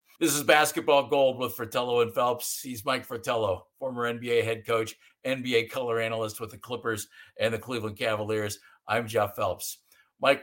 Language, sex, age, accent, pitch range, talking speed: English, male, 50-69, American, 115-145 Hz, 165 wpm